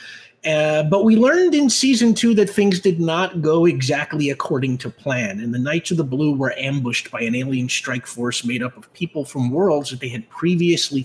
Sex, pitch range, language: male, 145-195 Hz, English